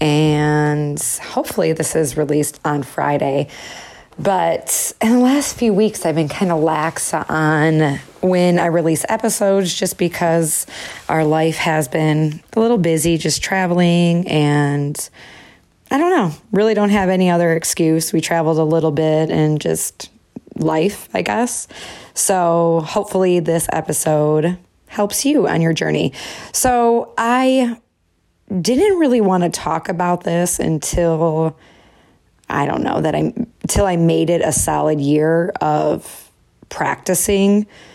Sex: female